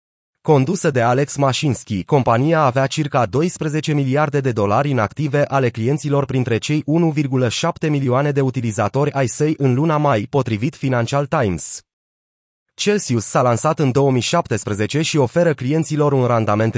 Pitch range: 120-150 Hz